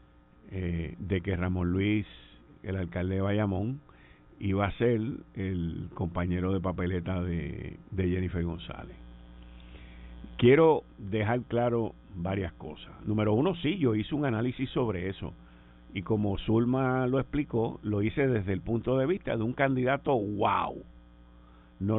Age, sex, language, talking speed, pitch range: 50-69, male, Spanish, 140 wpm, 85-115 Hz